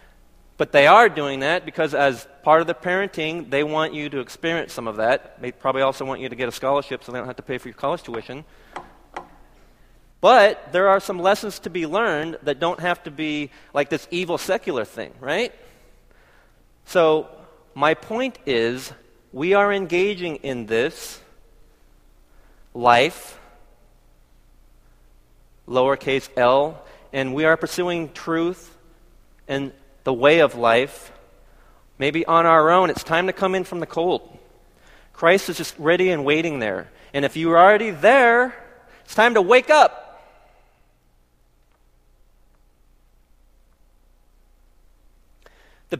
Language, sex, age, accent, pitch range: Korean, male, 30-49, American, 130-190 Hz